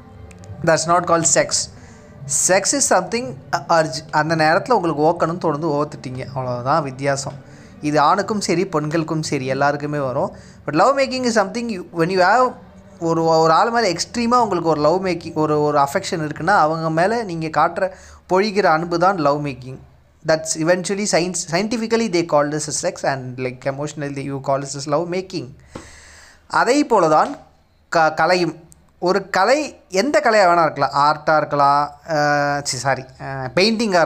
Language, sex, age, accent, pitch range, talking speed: Tamil, male, 20-39, native, 145-190 Hz, 150 wpm